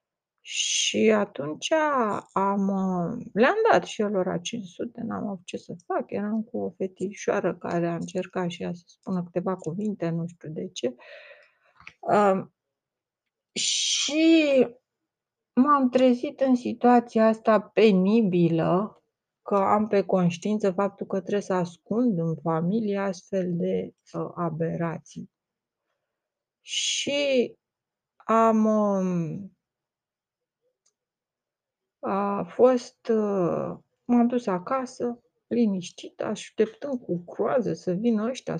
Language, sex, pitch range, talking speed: Romanian, female, 175-220 Hz, 105 wpm